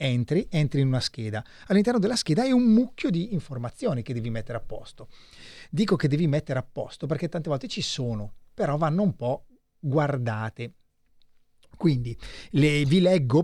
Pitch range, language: 120-160 Hz, Italian